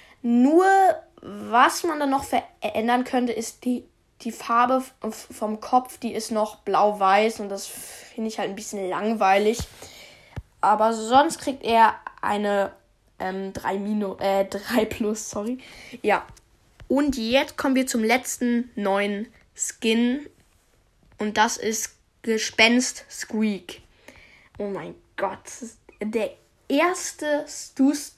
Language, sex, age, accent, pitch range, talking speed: German, female, 10-29, German, 215-275 Hz, 115 wpm